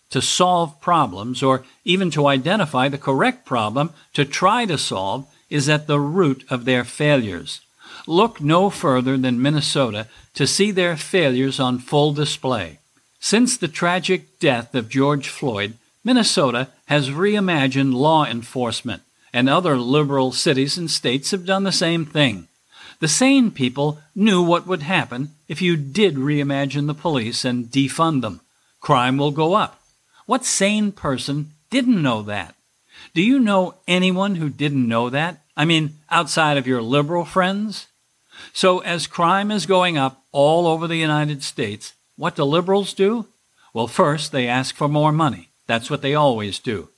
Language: English